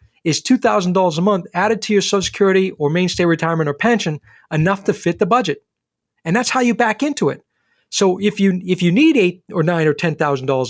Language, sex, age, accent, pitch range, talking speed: English, male, 40-59, American, 165-210 Hz, 200 wpm